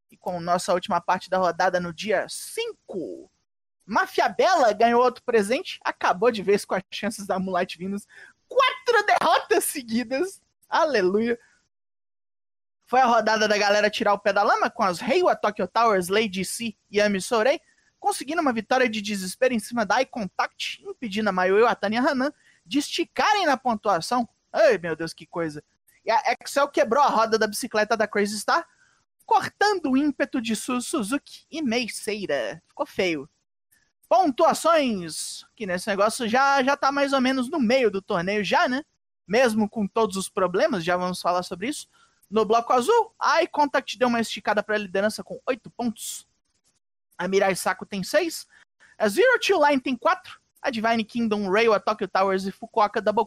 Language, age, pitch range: Portuguese, 20-39, 205-290 Hz